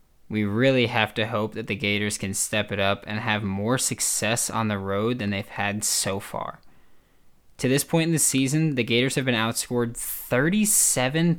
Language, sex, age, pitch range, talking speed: English, male, 20-39, 105-130 Hz, 190 wpm